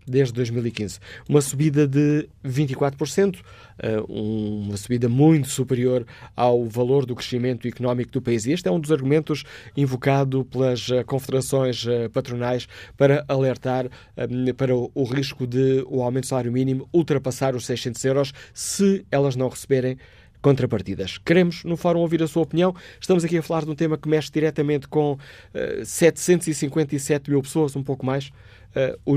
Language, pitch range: Portuguese, 125-150 Hz